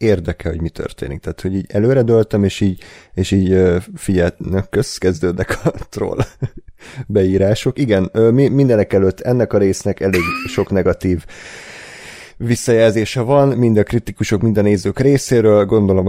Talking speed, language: 135 wpm, Hungarian